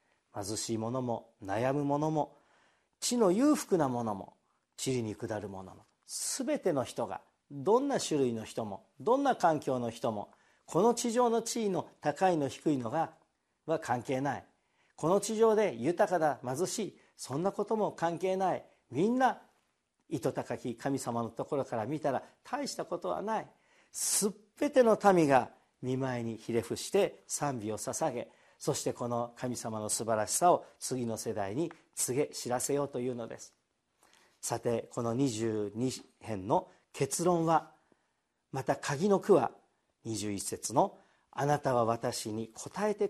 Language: Japanese